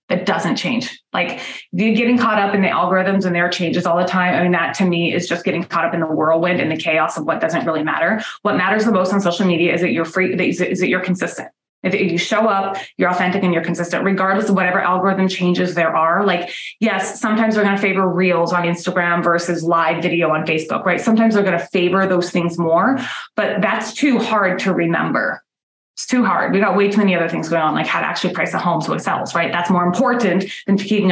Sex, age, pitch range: female, 20-39, 175-215 Hz